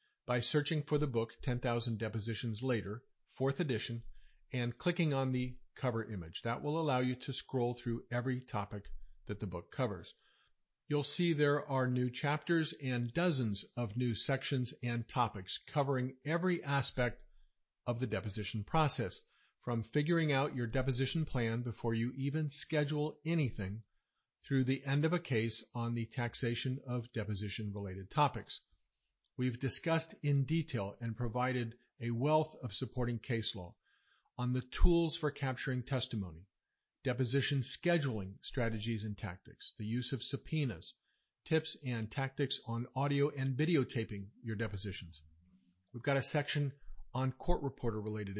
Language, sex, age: English, male, 50-69